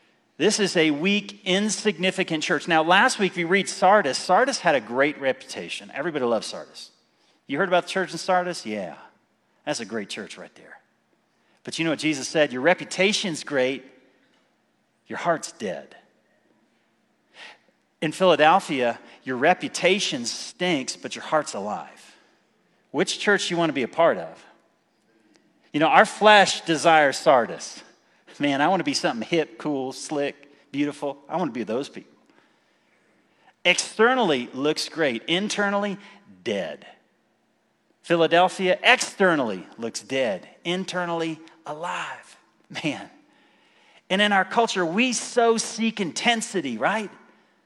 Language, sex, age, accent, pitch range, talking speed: English, male, 40-59, American, 155-205 Hz, 135 wpm